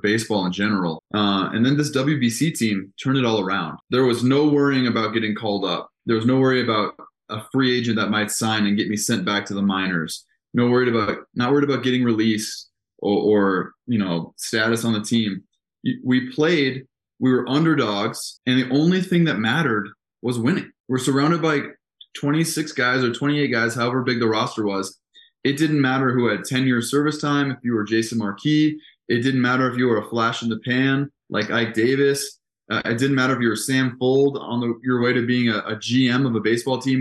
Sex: male